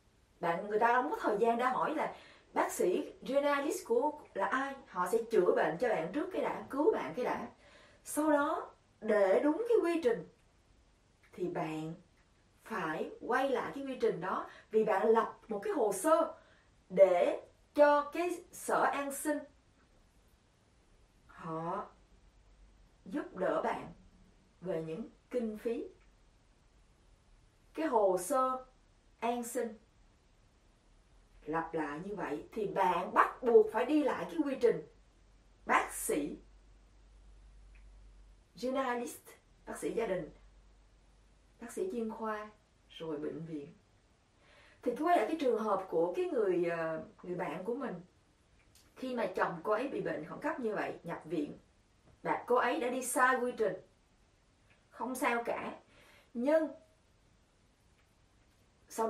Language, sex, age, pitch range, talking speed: Vietnamese, female, 20-39, 170-285 Hz, 140 wpm